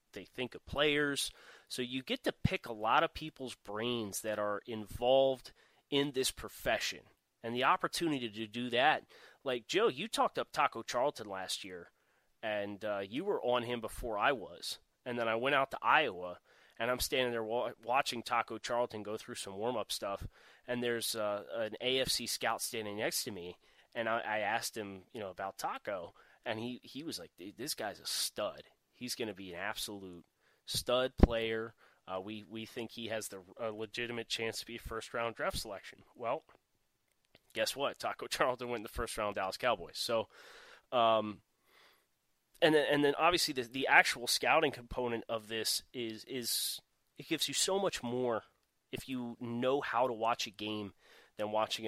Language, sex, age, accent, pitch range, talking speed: English, male, 30-49, American, 105-125 Hz, 185 wpm